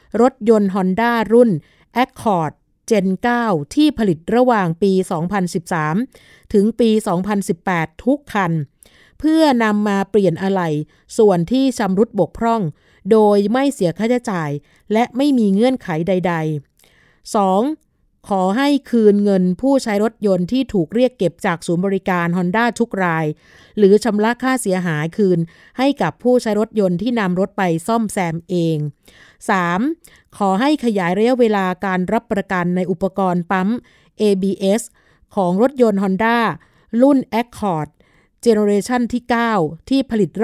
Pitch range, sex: 180-230 Hz, female